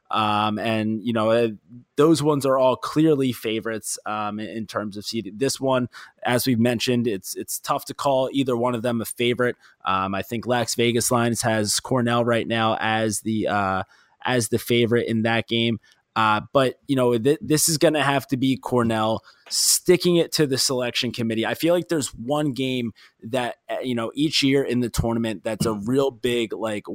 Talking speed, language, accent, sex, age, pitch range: 195 wpm, English, American, male, 20-39, 110-130 Hz